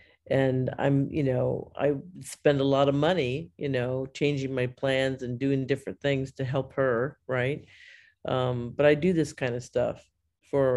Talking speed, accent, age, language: 180 wpm, American, 50-69, English